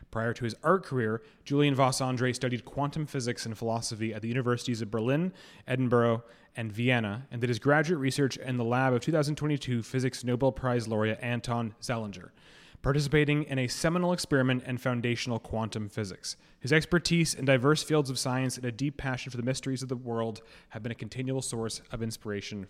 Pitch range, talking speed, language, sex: 115-135 Hz, 185 wpm, English, male